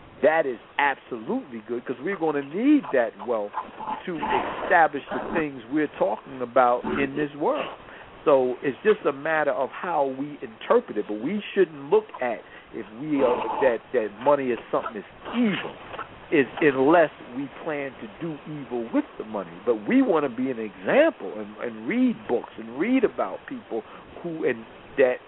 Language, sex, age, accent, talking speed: English, male, 50-69, American, 175 wpm